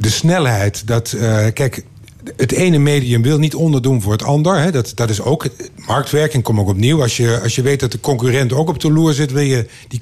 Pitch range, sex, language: 120-155 Hz, male, Dutch